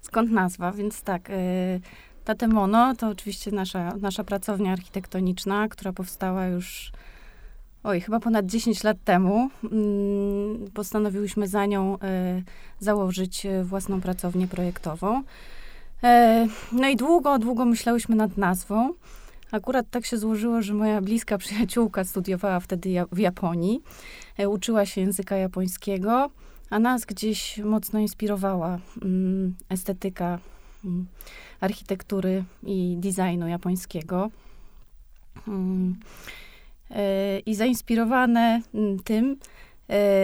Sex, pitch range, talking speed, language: female, 185-215 Hz, 105 wpm, Polish